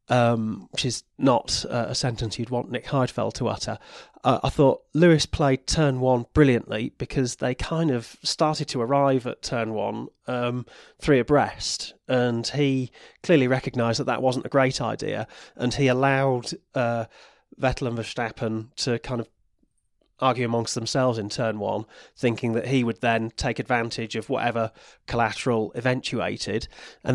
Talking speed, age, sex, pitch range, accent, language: 160 wpm, 30-49, male, 115-130 Hz, British, English